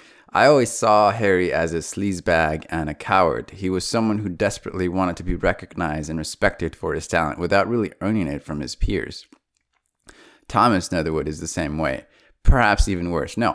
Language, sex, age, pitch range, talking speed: English, male, 20-39, 80-95 Hz, 180 wpm